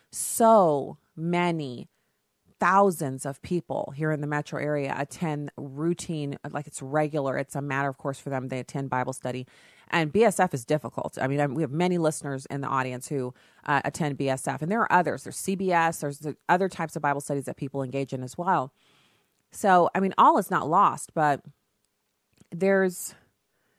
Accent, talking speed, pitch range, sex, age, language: American, 180 wpm, 135-175 Hz, female, 30-49, English